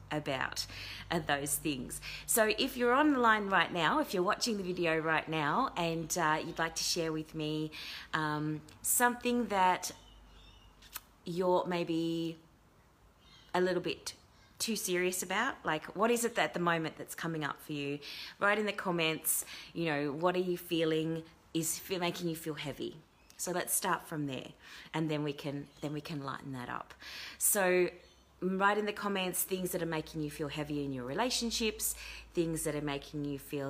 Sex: female